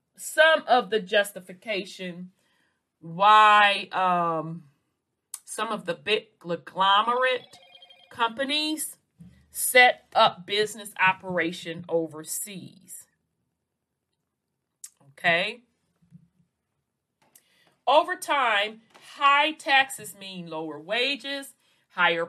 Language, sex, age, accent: English, female, 40-59, American